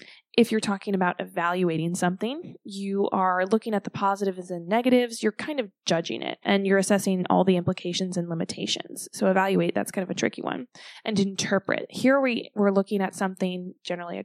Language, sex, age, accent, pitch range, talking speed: English, female, 20-39, American, 185-215 Hz, 185 wpm